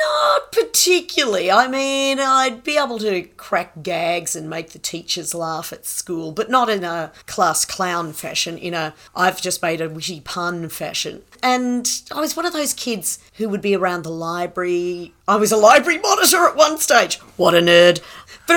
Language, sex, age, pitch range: English, female, 40-59, 170-235 Hz